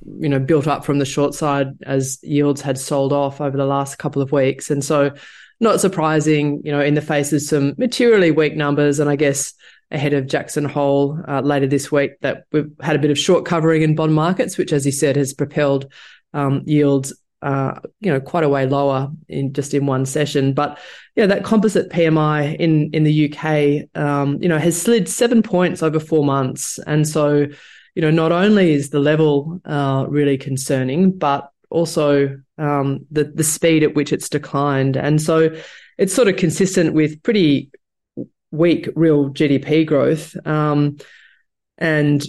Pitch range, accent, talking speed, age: 145-160 Hz, Australian, 185 wpm, 20-39